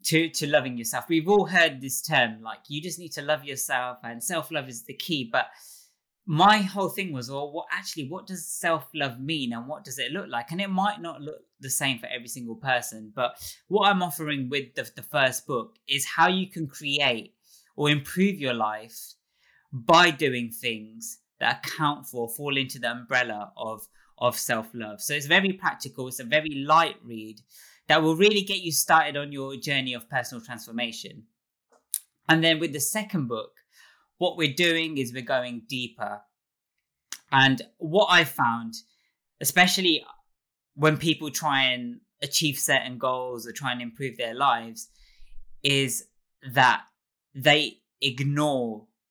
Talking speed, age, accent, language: 165 wpm, 20-39, British, English